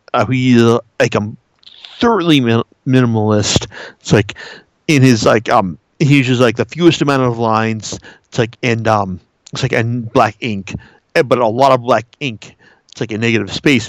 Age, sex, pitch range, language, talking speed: 50-69, male, 110-140 Hz, English, 180 wpm